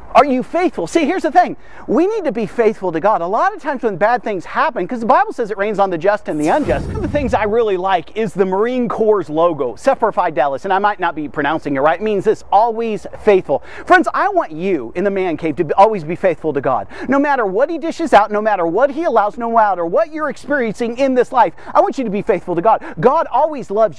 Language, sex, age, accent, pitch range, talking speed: English, male, 40-59, American, 215-305 Hz, 265 wpm